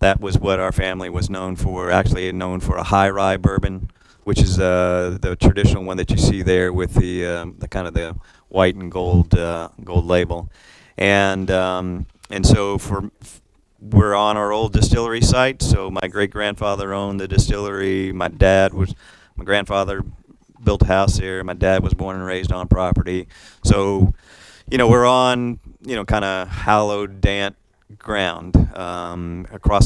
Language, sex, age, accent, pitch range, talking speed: English, male, 40-59, American, 90-100 Hz, 175 wpm